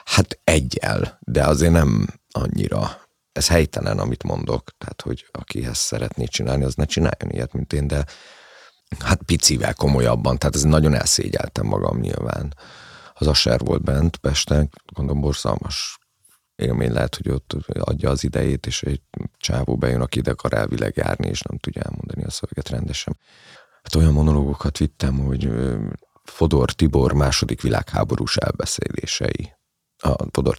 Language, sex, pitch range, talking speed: Hungarian, male, 70-85 Hz, 140 wpm